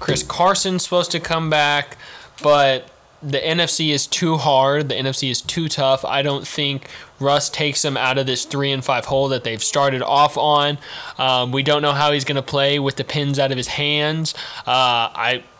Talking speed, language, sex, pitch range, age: 205 wpm, English, male, 135-150 Hz, 20-39